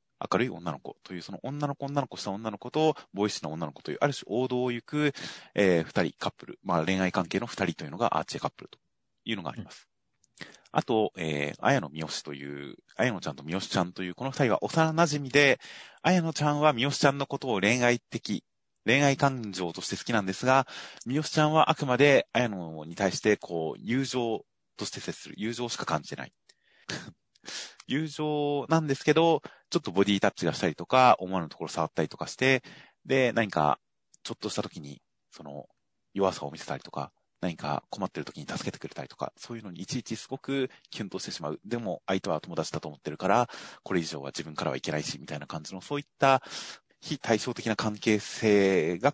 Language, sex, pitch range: Japanese, male, 95-140 Hz